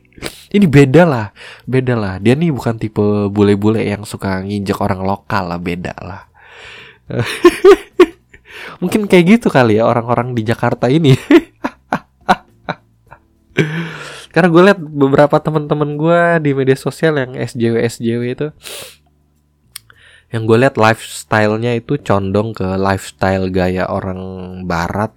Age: 20-39